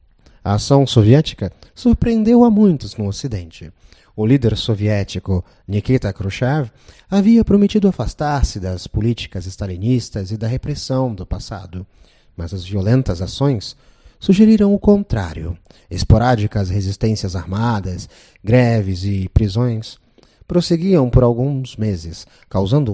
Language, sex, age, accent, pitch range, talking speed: Portuguese, male, 30-49, Brazilian, 95-135 Hz, 110 wpm